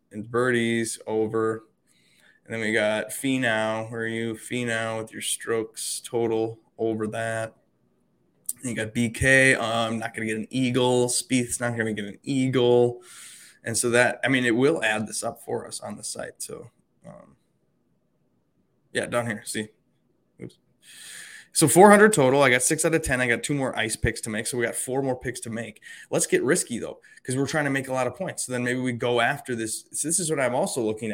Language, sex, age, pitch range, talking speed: English, male, 20-39, 110-130 Hz, 205 wpm